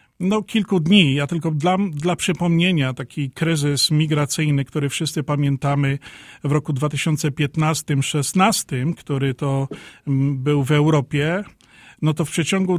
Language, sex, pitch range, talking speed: Polish, male, 140-155 Hz, 125 wpm